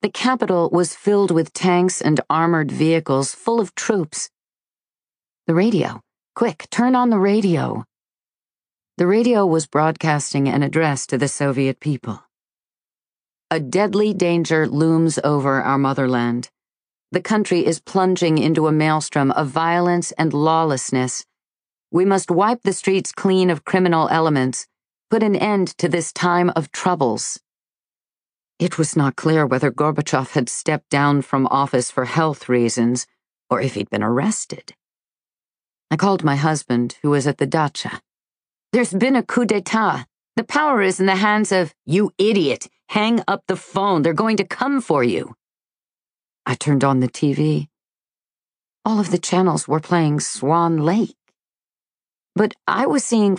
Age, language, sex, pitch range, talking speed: 40-59, English, female, 145-195 Hz, 150 wpm